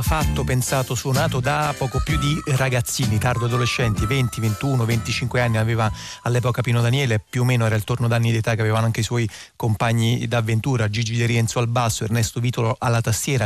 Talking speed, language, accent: 185 wpm, Italian, native